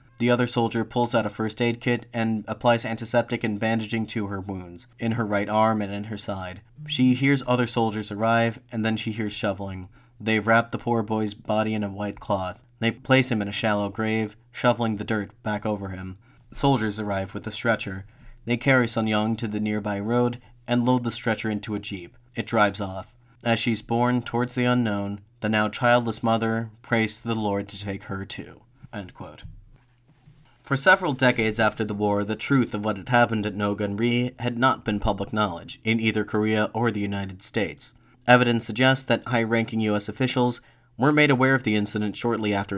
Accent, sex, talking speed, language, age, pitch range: American, male, 195 wpm, English, 30-49, 105-120 Hz